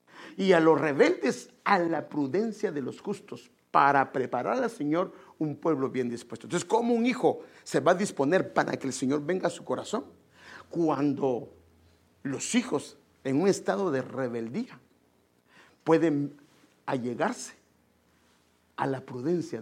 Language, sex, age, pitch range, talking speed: English, male, 50-69, 120-180 Hz, 145 wpm